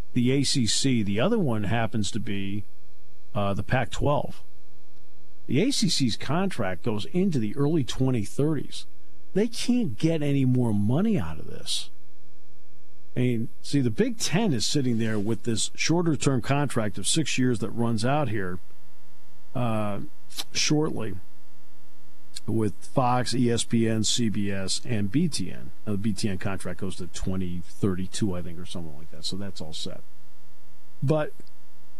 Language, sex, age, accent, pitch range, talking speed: English, male, 50-69, American, 80-130 Hz, 140 wpm